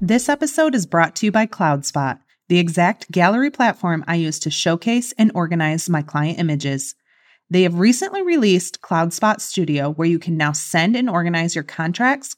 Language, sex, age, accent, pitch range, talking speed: English, female, 30-49, American, 155-210 Hz, 175 wpm